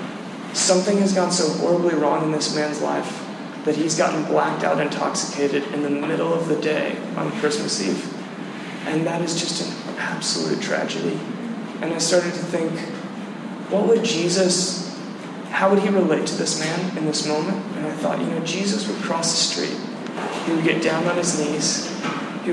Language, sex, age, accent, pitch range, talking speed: English, male, 20-39, American, 165-190 Hz, 180 wpm